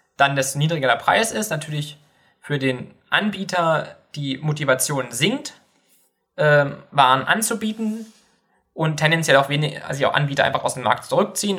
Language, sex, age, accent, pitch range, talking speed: German, male, 20-39, German, 135-165 Hz, 145 wpm